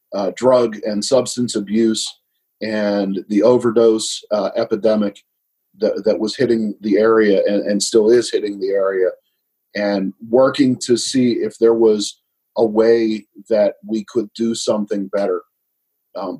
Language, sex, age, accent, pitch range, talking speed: English, male, 40-59, American, 110-125 Hz, 145 wpm